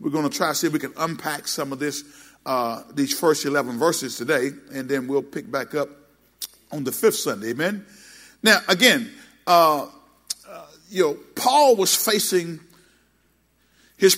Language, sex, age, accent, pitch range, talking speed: English, male, 40-59, American, 155-205 Hz, 170 wpm